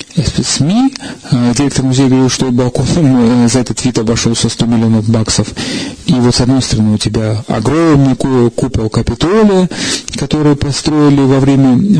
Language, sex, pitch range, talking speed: Russian, male, 115-135 Hz, 130 wpm